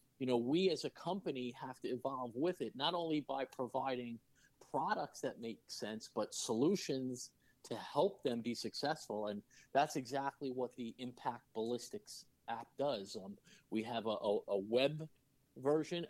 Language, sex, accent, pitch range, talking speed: English, male, American, 120-160 Hz, 155 wpm